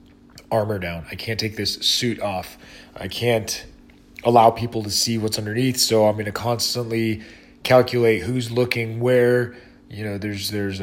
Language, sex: English, male